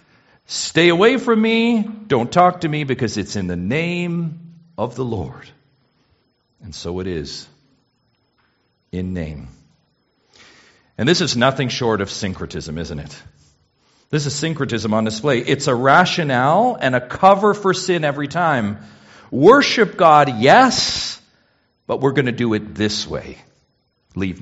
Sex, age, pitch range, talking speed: male, 50-69, 105-155 Hz, 145 wpm